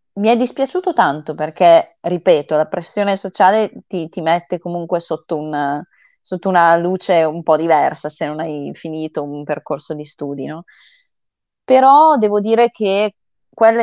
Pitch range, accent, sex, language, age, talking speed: 155-210 Hz, native, female, Italian, 20-39, 150 wpm